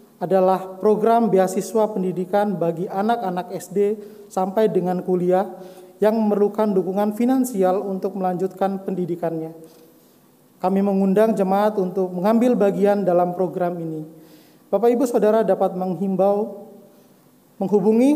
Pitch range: 180-210 Hz